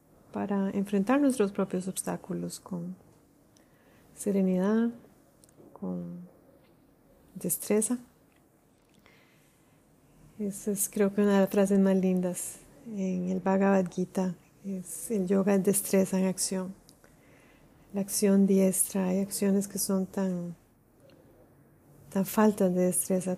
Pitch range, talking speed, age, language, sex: 185-210 Hz, 110 wpm, 30-49, Spanish, female